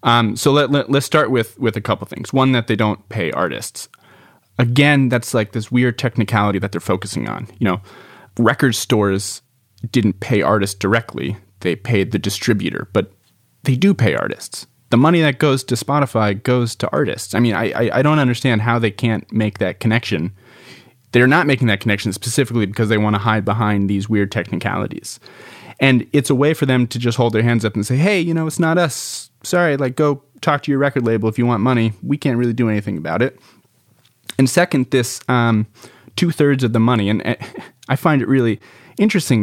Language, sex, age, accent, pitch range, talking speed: English, male, 30-49, American, 110-135 Hz, 200 wpm